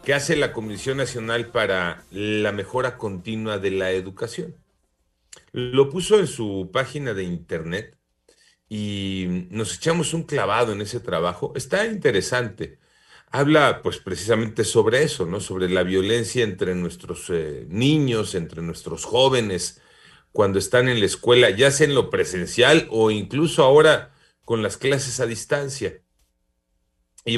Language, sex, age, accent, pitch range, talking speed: Spanish, male, 40-59, Mexican, 95-125 Hz, 140 wpm